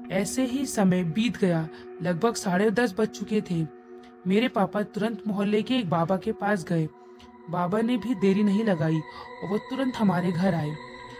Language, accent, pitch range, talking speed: Hindi, native, 165-220 Hz, 180 wpm